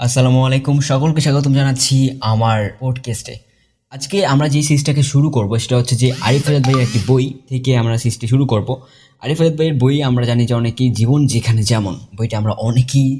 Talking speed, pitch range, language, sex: 180 wpm, 110-135 Hz, Bengali, male